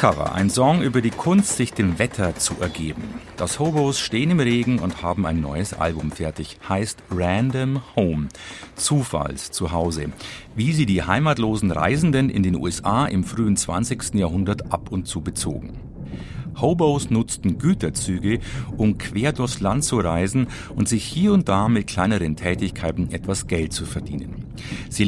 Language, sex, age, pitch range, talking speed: German, male, 50-69, 90-130 Hz, 155 wpm